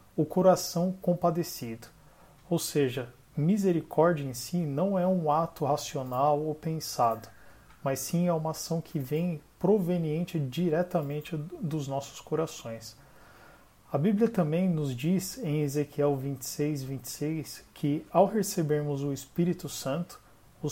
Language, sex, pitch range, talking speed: Portuguese, male, 140-170 Hz, 125 wpm